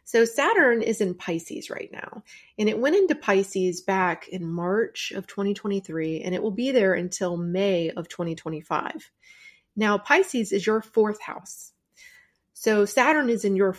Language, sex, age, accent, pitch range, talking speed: English, female, 30-49, American, 175-225 Hz, 160 wpm